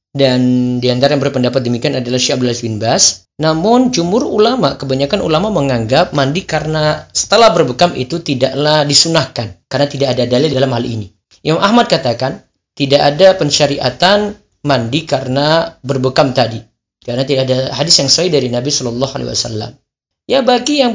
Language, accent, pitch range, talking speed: Indonesian, native, 130-190 Hz, 150 wpm